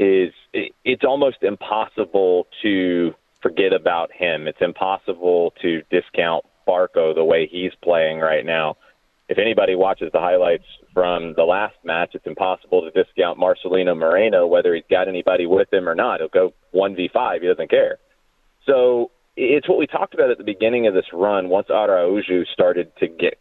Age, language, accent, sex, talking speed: 30-49, English, American, male, 165 wpm